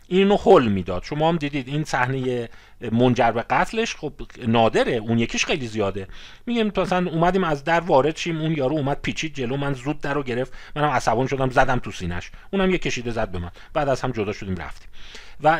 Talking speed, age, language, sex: 205 wpm, 40-59, Persian, male